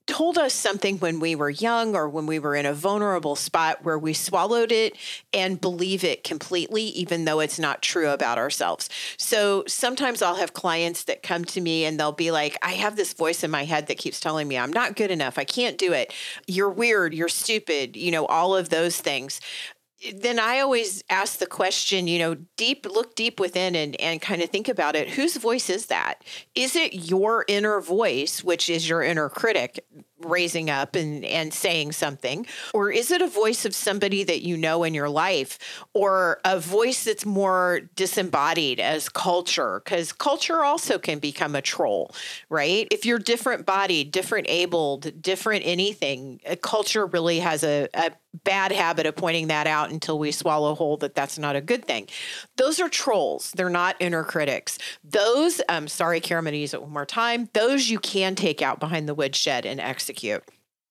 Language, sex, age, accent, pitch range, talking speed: English, female, 40-59, American, 160-220 Hz, 195 wpm